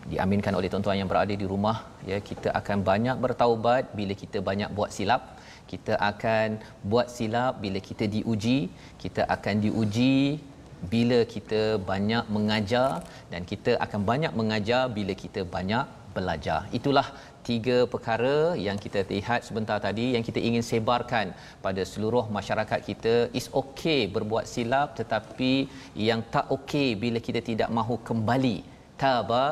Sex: male